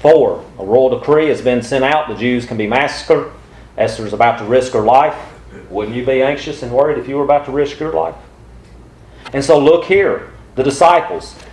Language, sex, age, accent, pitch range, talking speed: English, male, 40-59, American, 130-195 Hz, 205 wpm